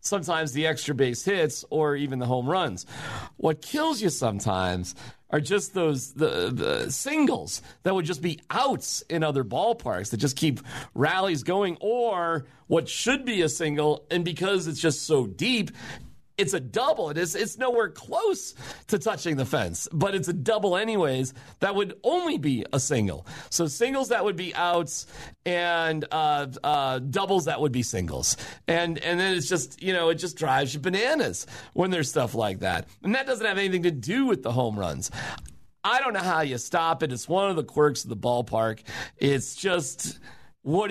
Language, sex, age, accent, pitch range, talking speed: English, male, 40-59, American, 130-190 Hz, 185 wpm